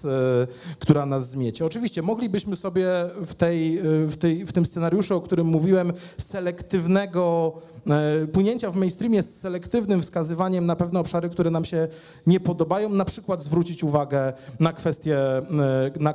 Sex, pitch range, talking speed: male, 145-180 Hz, 135 wpm